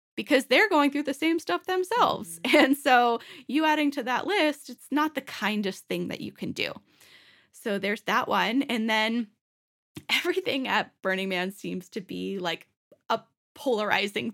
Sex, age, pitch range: female, 10-29, 205-290 Hz